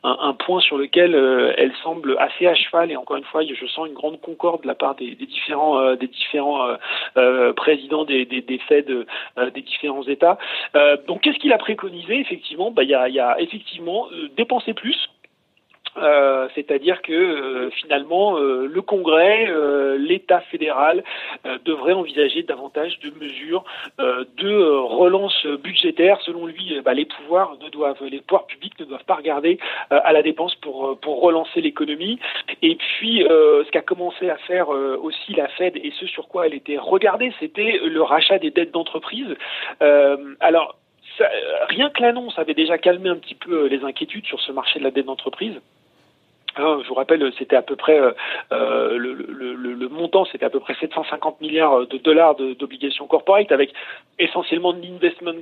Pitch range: 140-190 Hz